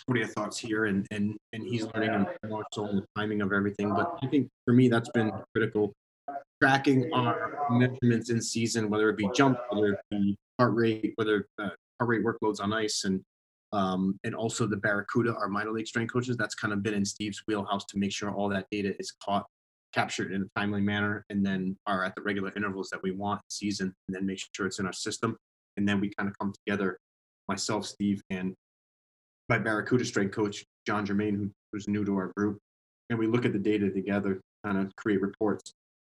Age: 20-39